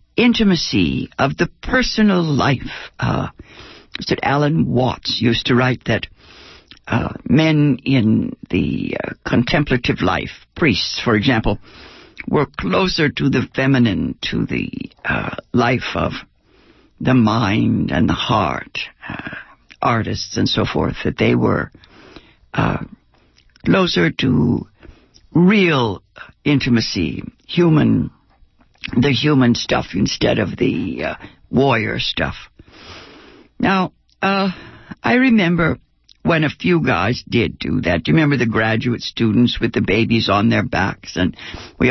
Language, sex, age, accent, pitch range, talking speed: English, female, 60-79, American, 115-185 Hz, 125 wpm